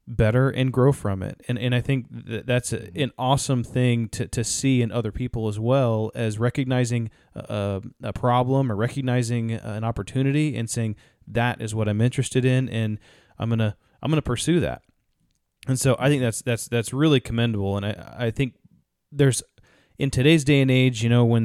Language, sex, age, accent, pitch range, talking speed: English, male, 20-39, American, 110-130 Hz, 195 wpm